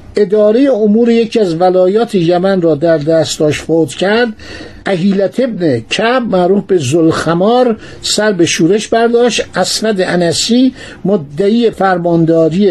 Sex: male